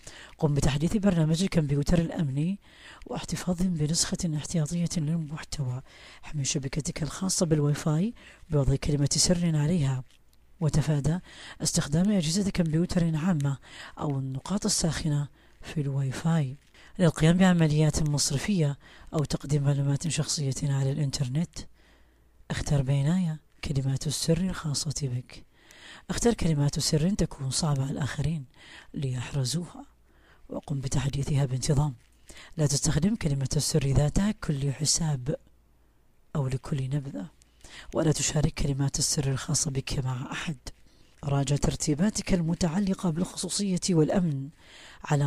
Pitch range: 140-170 Hz